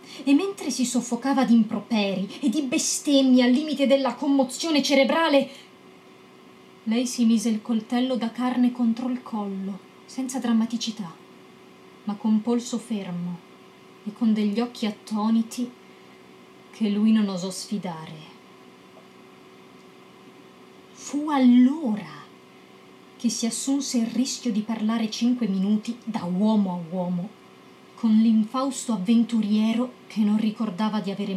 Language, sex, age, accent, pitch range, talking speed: Italian, female, 30-49, native, 185-245 Hz, 120 wpm